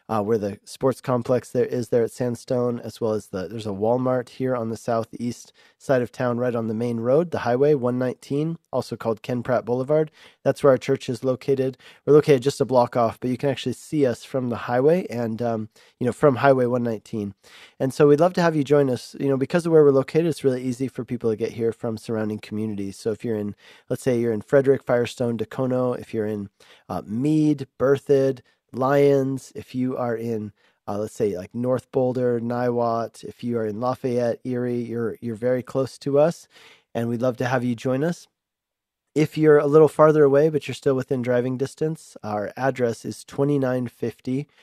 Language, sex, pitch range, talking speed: English, male, 115-135 Hz, 210 wpm